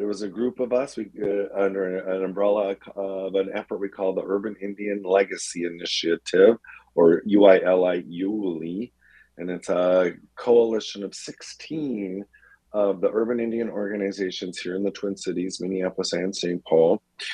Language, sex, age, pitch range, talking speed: English, male, 40-59, 90-105 Hz, 145 wpm